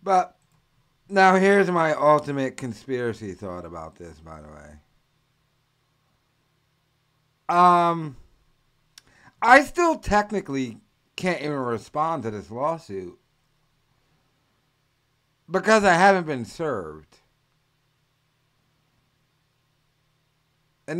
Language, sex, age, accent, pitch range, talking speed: English, male, 50-69, American, 125-155 Hz, 80 wpm